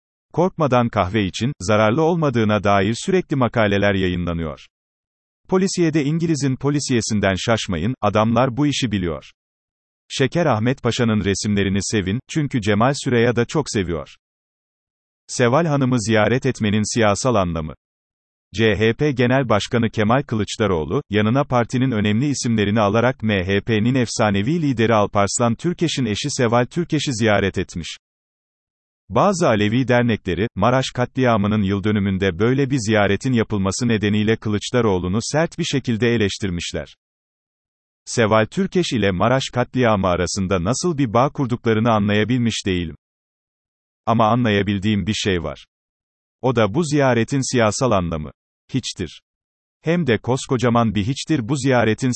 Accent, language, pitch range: native, Turkish, 100-130 Hz